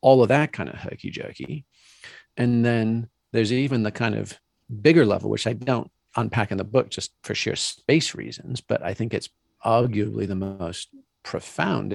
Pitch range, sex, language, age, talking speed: 105-120 Hz, male, English, 40-59, 175 wpm